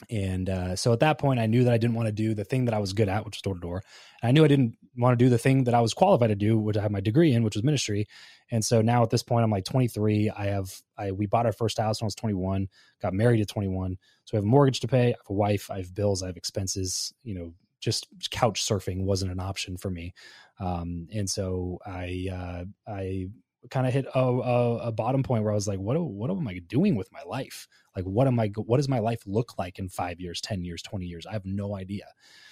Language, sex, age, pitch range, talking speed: English, male, 20-39, 95-120 Hz, 275 wpm